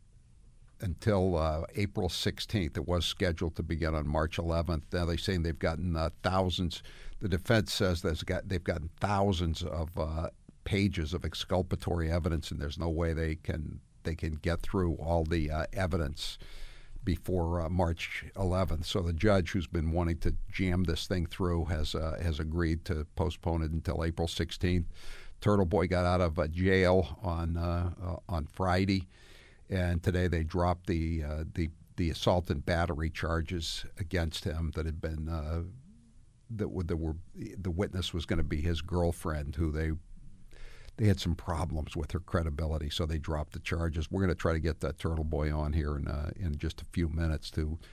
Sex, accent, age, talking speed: male, American, 60-79, 185 wpm